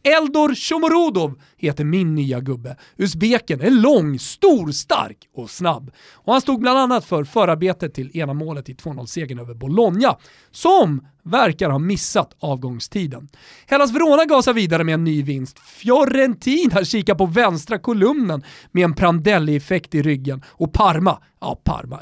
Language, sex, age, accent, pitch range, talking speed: Swedish, male, 40-59, native, 145-225 Hz, 145 wpm